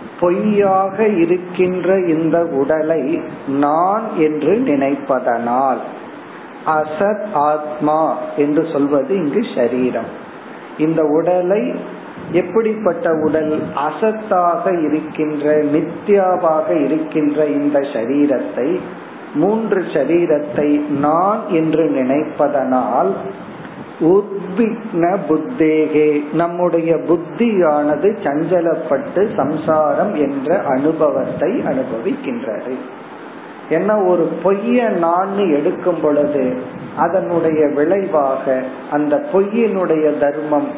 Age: 50-69